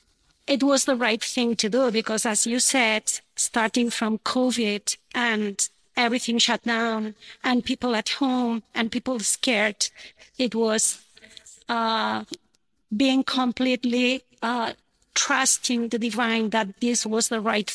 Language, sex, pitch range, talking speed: English, female, 215-245 Hz, 130 wpm